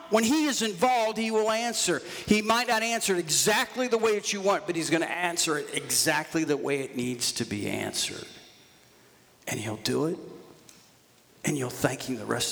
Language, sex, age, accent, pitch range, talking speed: English, male, 50-69, American, 110-150 Hz, 200 wpm